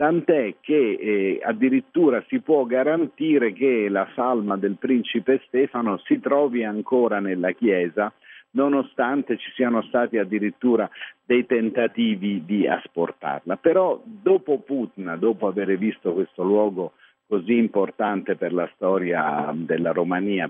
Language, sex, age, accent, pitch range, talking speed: Italian, male, 50-69, native, 105-140 Hz, 125 wpm